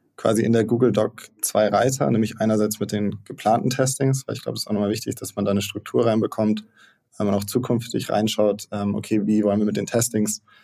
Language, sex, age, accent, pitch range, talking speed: German, male, 20-39, German, 100-110 Hz, 220 wpm